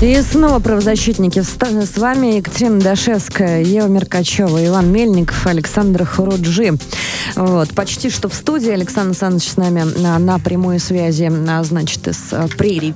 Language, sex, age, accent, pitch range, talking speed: Russian, female, 20-39, native, 160-210 Hz, 135 wpm